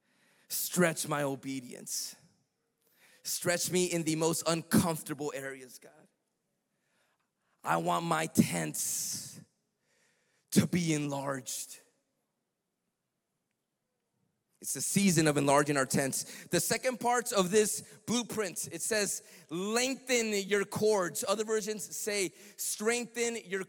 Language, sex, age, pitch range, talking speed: English, male, 30-49, 190-255 Hz, 105 wpm